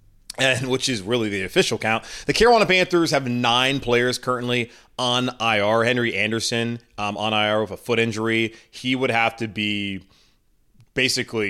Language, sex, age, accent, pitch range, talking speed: English, male, 30-49, American, 105-130 Hz, 160 wpm